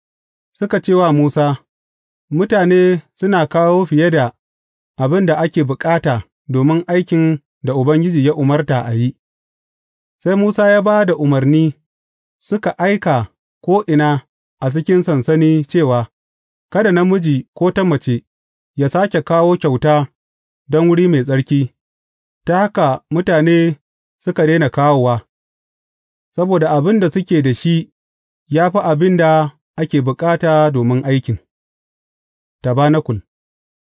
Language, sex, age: English, male, 30-49